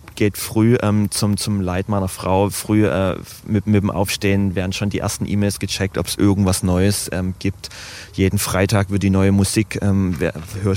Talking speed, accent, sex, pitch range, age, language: 190 wpm, German, male, 95-105 Hz, 30-49, German